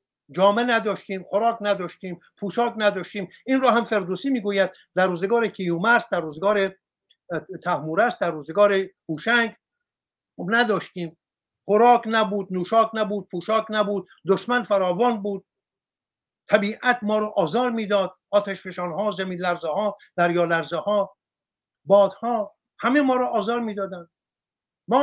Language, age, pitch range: Persian, 60-79, 190-245 Hz